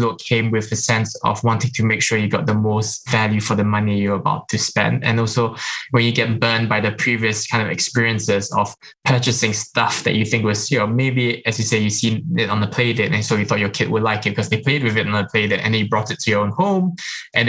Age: 10-29